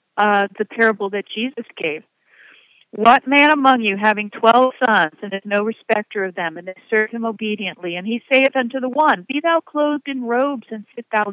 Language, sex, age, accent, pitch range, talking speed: English, female, 50-69, American, 205-250 Hz, 200 wpm